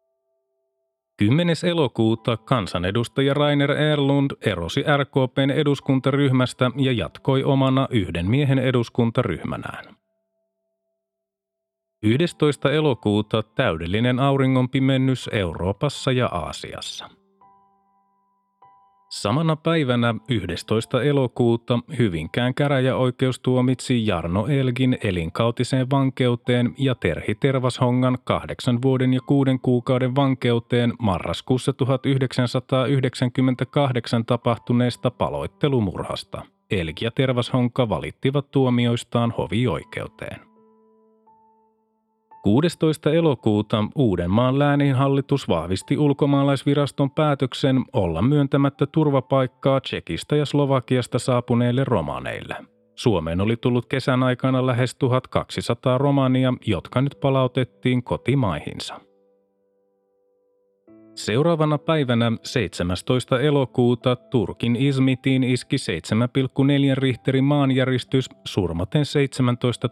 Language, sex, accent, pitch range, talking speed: Finnish, male, native, 115-140 Hz, 75 wpm